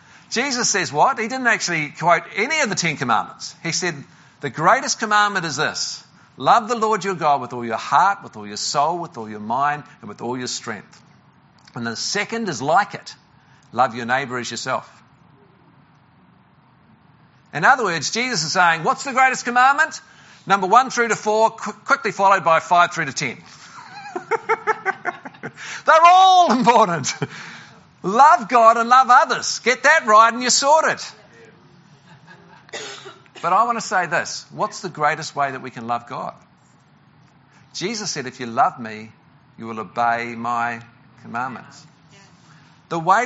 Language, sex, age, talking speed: English, male, 50-69, 160 wpm